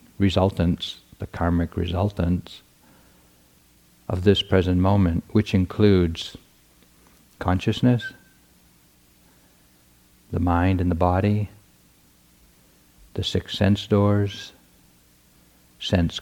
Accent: American